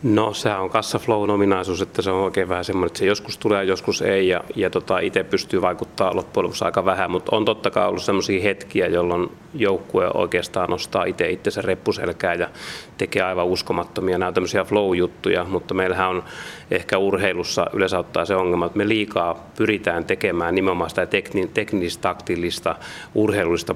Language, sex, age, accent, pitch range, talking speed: Finnish, male, 30-49, native, 90-100 Hz, 160 wpm